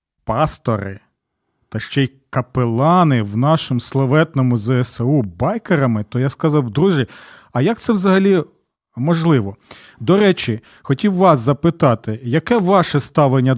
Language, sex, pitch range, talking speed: Ukrainian, male, 130-180 Hz, 120 wpm